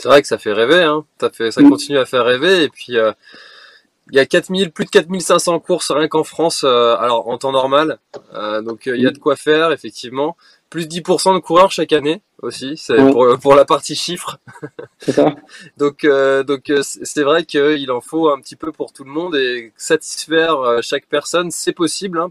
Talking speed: 215 wpm